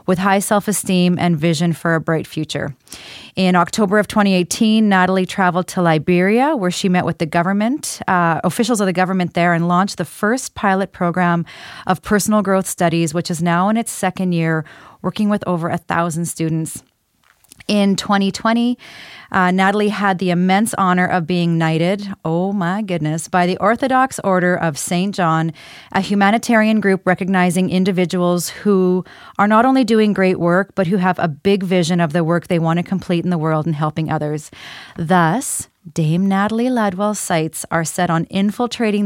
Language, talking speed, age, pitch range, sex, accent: English, 175 wpm, 30-49, 170-205 Hz, female, American